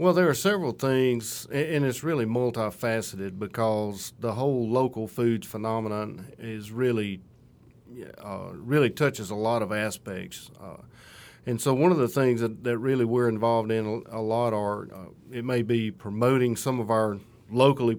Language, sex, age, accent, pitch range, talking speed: English, male, 40-59, American, 110-125 Hz, 165 wpm